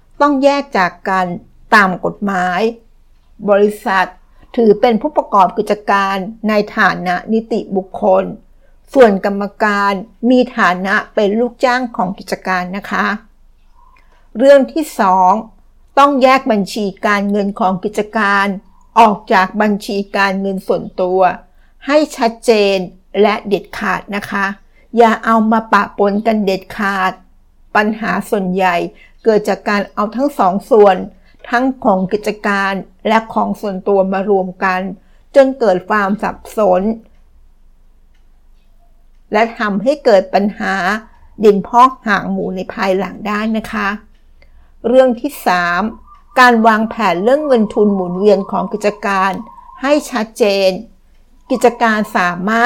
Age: 60-79